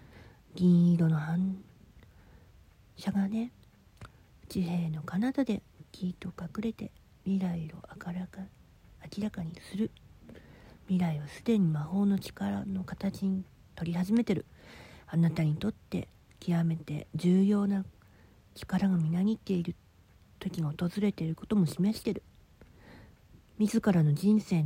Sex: female